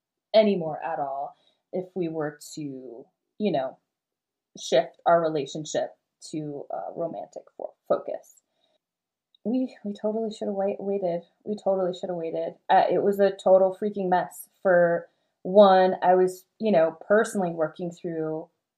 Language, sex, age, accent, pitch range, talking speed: English, female, 20-39, American, 170-215 Hz, 135 wpm